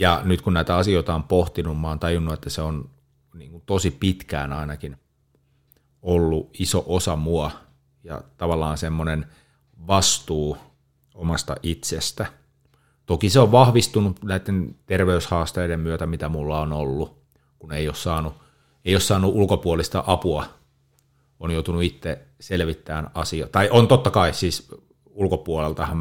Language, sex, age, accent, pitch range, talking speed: Finnish, male, 30-49, native, 75-90 Hz, 135 wpm